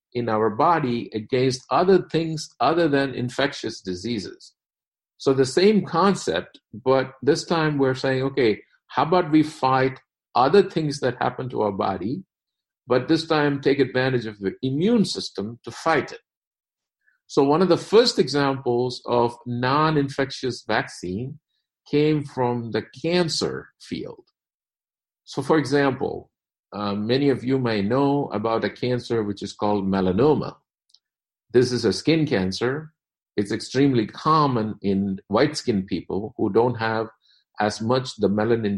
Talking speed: 140 wpm